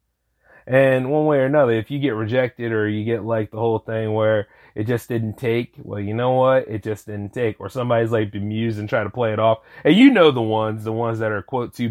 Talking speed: 250 wpm